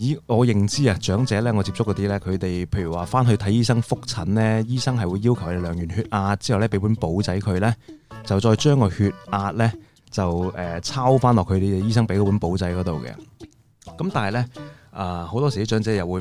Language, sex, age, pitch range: Chinese, male, 20-39, 95-120 Hz